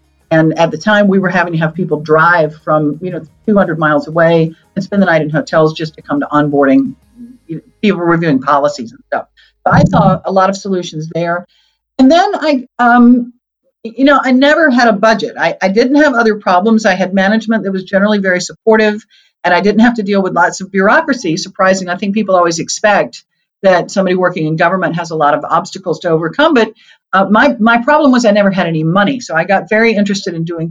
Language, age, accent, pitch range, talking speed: English, 50-69, American, 170-230 Hz, 215 wpm